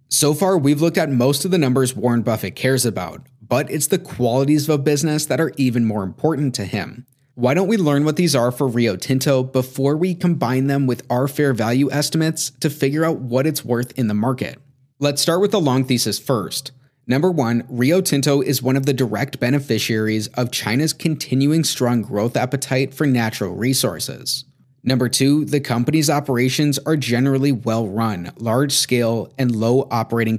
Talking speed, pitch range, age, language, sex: 190 wpm, 120-145 Hz, 30-49, English, male